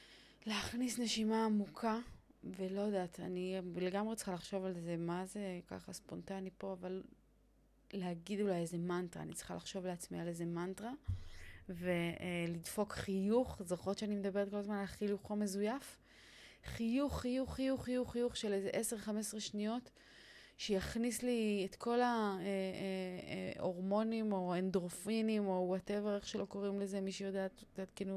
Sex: female